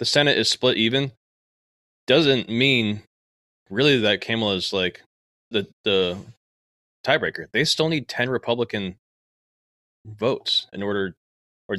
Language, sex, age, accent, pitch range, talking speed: English, male, 20-39, American, 95-125 Hz, 120 wpm